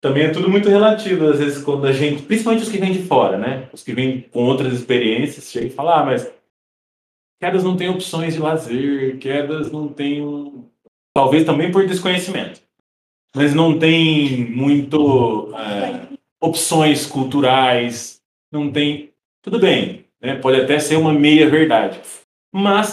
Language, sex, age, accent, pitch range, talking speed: Portuguese, male, 20-39, Brazilian, 140-185 Hz, 155 wpm